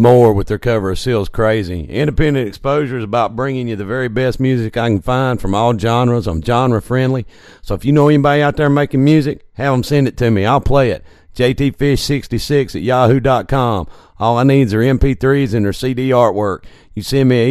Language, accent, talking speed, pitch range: English, American, 210 wpm, 105-130 Hz